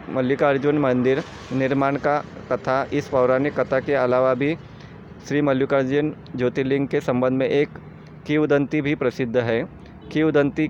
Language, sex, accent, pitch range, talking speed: Hindi, male, native, 125-145 Hz, 130 wpm